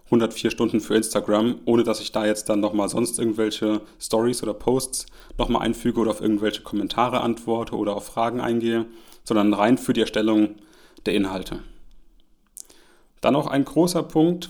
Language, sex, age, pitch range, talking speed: German, male, 30-49, 110-130 Hz, 160 wpm